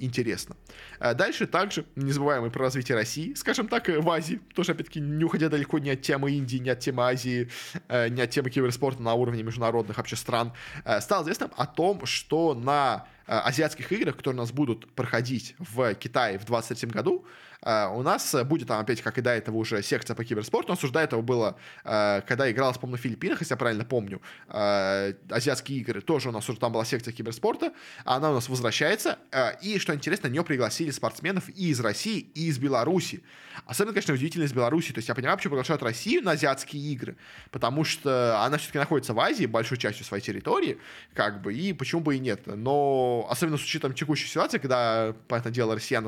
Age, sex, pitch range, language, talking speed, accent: 20-39, male, 115-150 Hz, Russian, 200 wpm, native